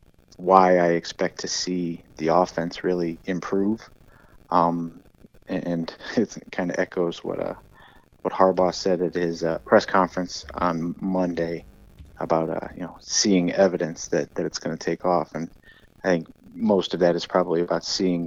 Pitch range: 85-95 Hz